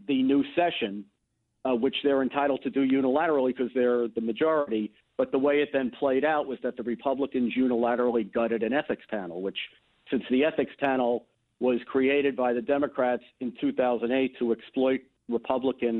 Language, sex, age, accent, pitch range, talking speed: English, male, 50-69, American, 110-135 Hz, 170 wpm